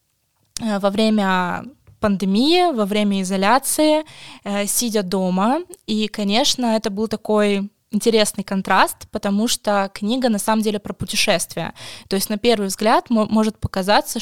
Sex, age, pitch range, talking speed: female, 20-39, 195-230 Hz, 125 wpm